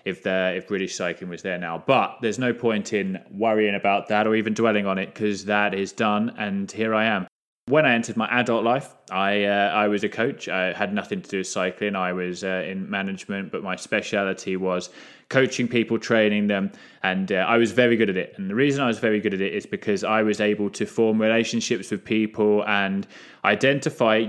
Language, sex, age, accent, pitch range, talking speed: English, male, 20-39, British, 95-115 Hz, 220 wpm